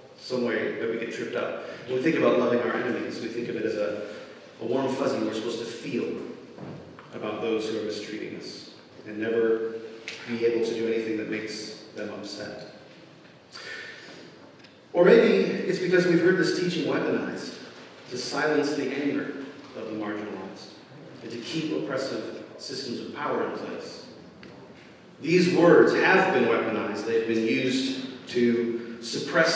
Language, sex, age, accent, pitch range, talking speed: English, male, 40-59, American, 115-160 Hz, 160 wpm